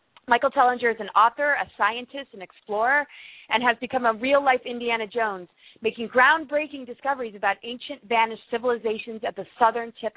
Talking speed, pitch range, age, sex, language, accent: 160 wpm, 215-265 Hz, 30-49, female, English, American